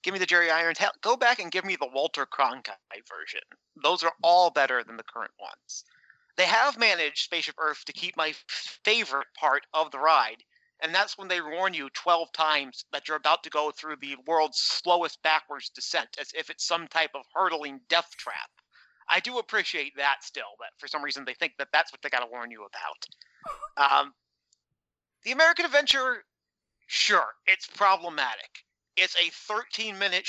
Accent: American